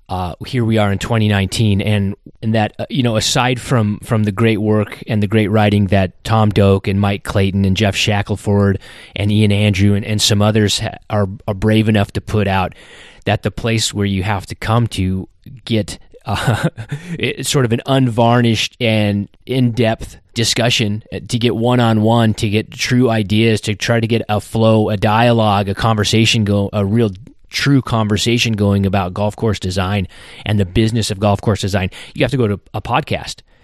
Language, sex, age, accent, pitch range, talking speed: English, male, 30-49, American, 100-115 Hz, 190 wpm